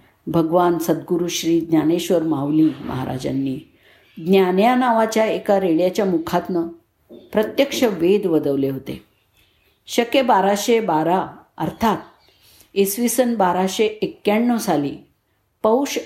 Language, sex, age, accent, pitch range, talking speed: Marathi, female, 50-69, native, 170-230 Hz, 95 wpm